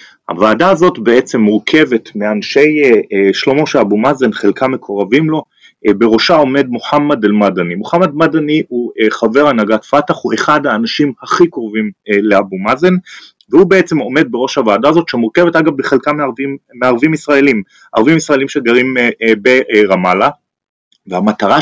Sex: male